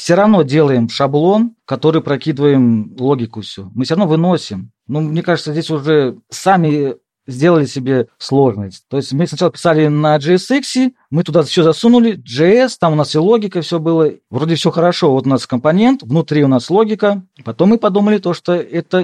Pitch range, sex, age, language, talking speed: 135-180 Hz, male, 40-59, Russian, 175 wpm